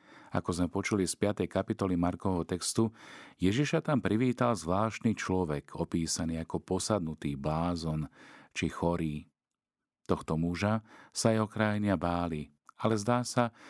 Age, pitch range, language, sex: 40-59, 85-105 Hz, Slovak, male